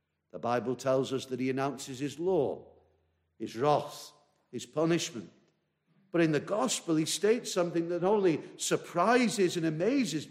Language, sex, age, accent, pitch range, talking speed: English, male, 50-69, British, 130-170 Hz, 150 wpm